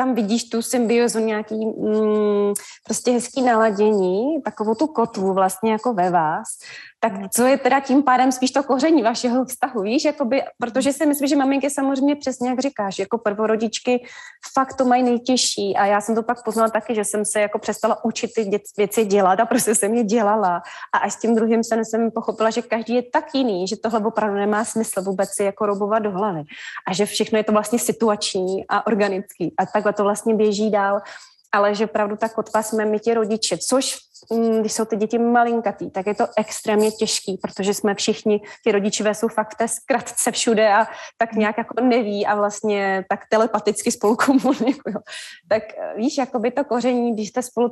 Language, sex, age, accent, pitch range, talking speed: Czech, female, 20-39, native, 210-240 Hz, 185 wpm